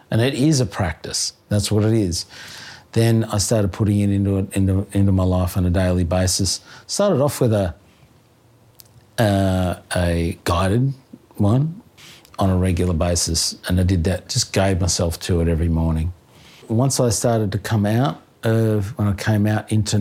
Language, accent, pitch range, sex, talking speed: English, Australian, 95-125 Hz, male, 175 wpm